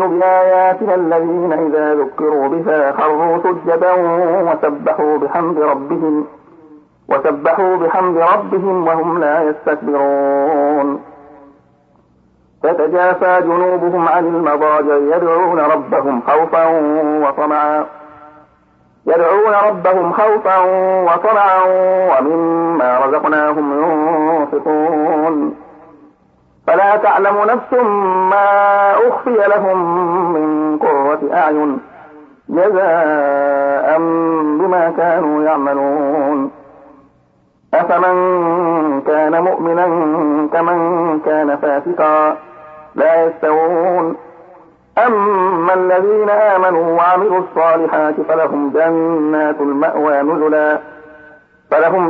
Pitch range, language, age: 150-180 Hz, Arabic, 50-69